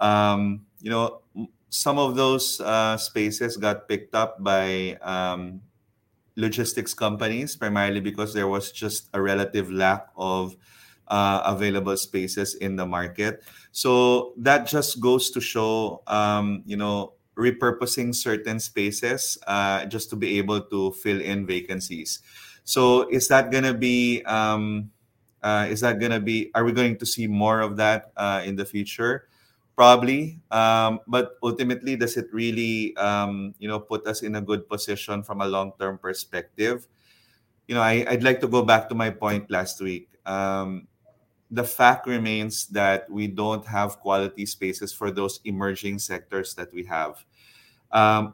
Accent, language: Filipino, English